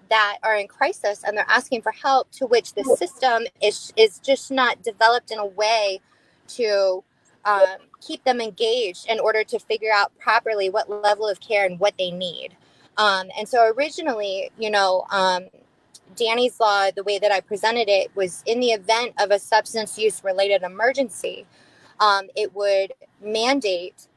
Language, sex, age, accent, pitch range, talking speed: English, female, 20-39, American, 195-225 Hz, 170 wpm